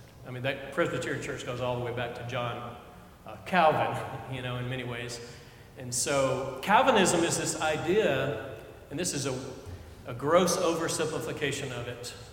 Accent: American